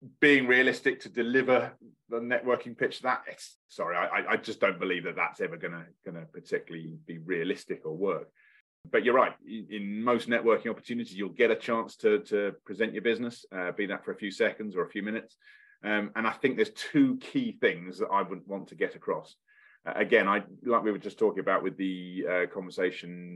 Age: 30-49